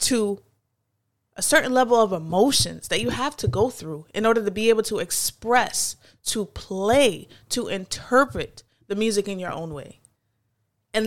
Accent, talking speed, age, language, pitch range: American, 165 wpm, 20-39, English, 180-225 Hz